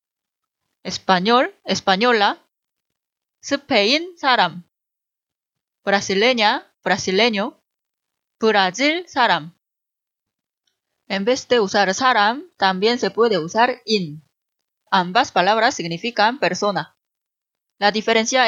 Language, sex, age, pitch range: Korean, female, 20-39, 190-250 Hz